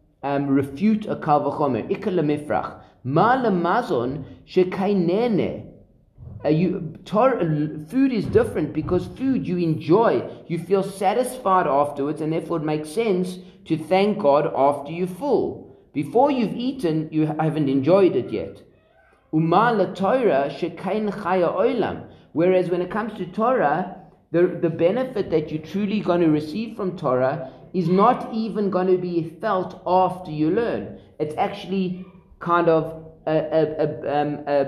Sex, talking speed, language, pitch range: male, 135 wpm, English, 150-190 Hz